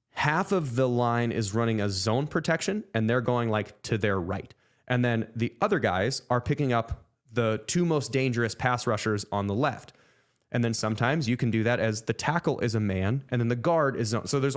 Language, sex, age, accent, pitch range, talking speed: English, male, 20-39, American, 110-135 Hz, 220 wpm